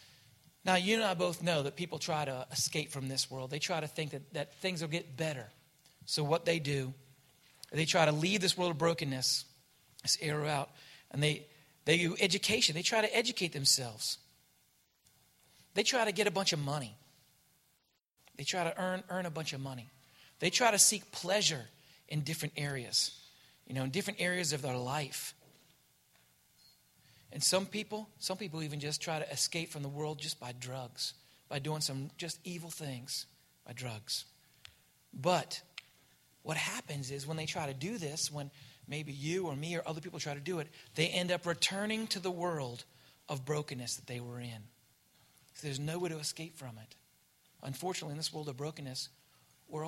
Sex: male